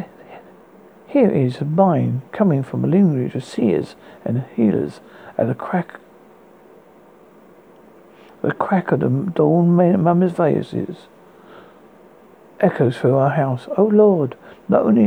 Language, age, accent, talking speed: English, 60-79, British, 120 wpm